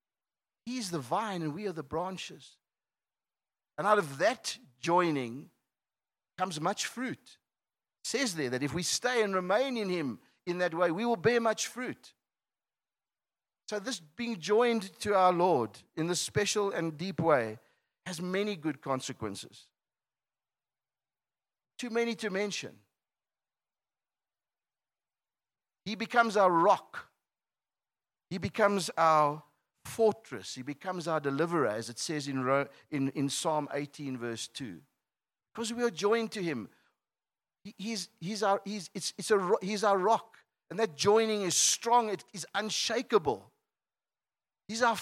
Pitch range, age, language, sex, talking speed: 160-215 Hz, 50-69, English, male, 140 wpm